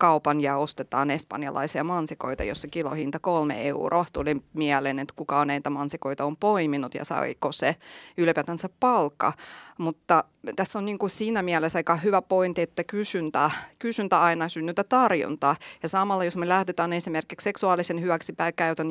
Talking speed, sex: 145 wpm, female